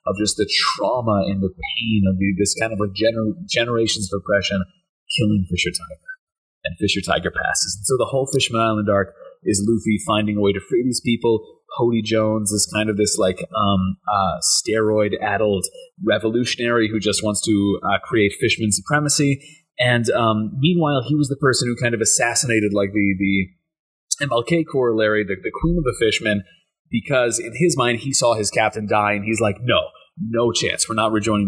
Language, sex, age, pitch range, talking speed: English, male, 30-49, 105-140 Hz, 185 wpm